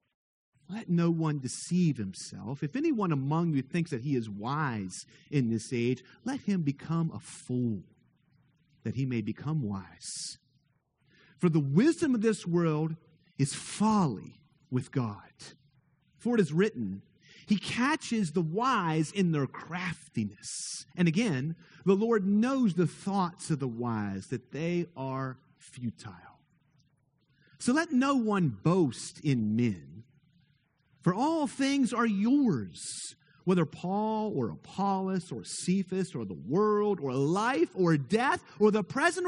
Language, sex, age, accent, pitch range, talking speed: English, male, 40-59, American, 135-185 Hz, 135 wpm